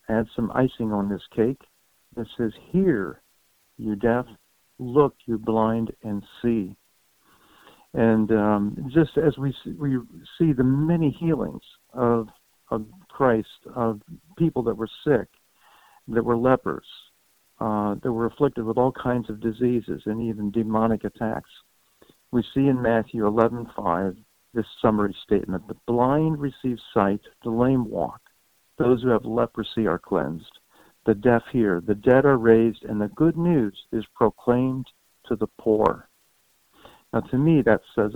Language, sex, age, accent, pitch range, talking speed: English, male, 60-79, American, 110-130 Hz, 145 wpm